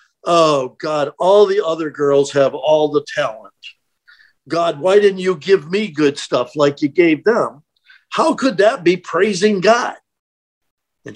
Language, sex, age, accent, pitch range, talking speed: English, male, 50-69, American, 135-225 Hz, 155 wpm